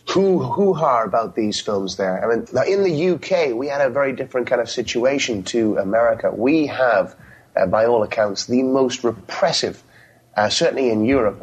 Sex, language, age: male, English, 30-49